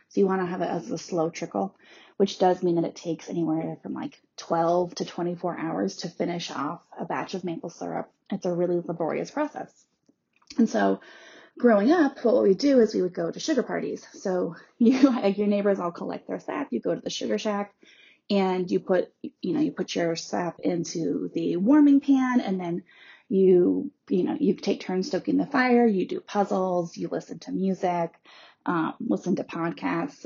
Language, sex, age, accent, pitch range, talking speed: English, female, 30-49, American, 175-235 Hz, 200 wpm